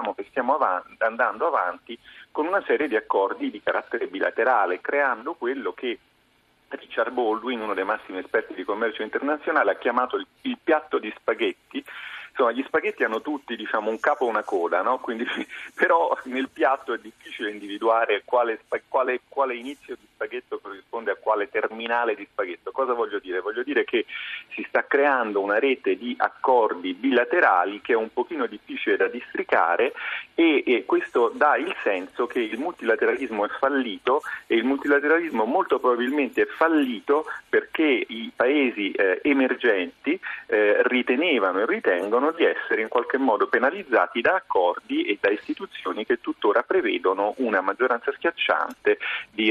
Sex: male